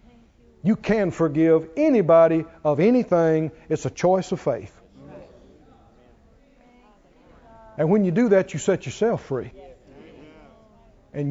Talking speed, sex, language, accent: 110 wpm, male, English, American